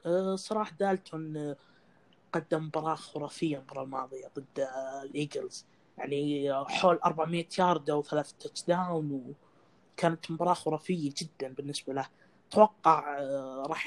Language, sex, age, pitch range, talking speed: Arabic, female, 20-39, 140-180 Hz, 105 wpm